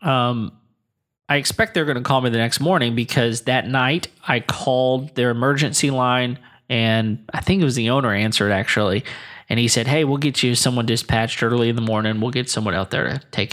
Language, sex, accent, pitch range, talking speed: English, male, American, 115-135 Hz, 215 wpm